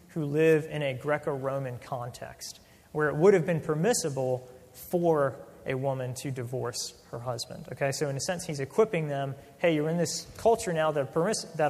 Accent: American